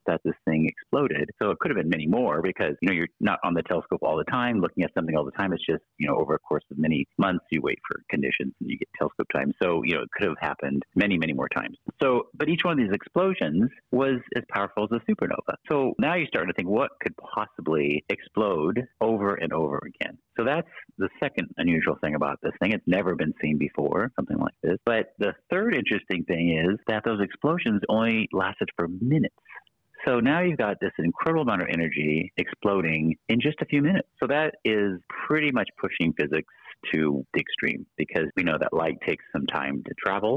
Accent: American